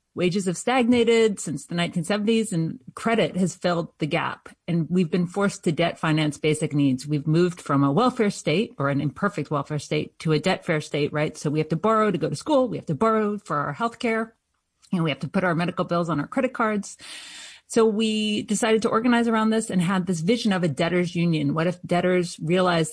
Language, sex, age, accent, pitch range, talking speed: English, female, 40-59, American, 160-205 Hz, 225 wpm